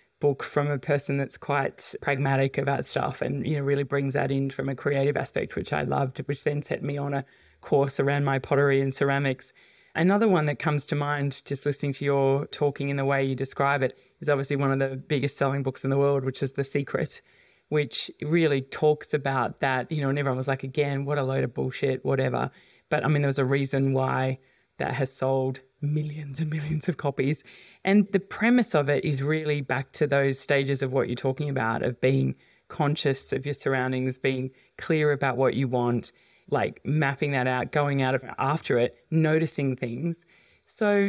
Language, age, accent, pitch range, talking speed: English, 20-39, Australian, 135-155 Hz, 205 wpm